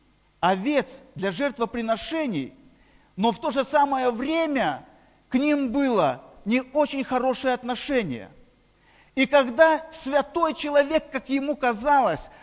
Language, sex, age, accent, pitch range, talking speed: Russian, male, 40-59, native, 255-295 Hz, 110 wpm